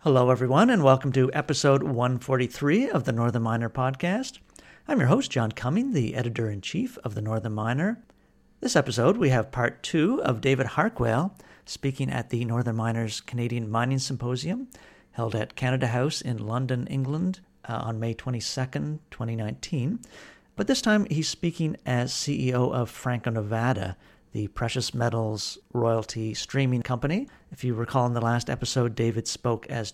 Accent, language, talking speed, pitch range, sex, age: American, English, 155 wpm, 115-135 Hz, male, 50-69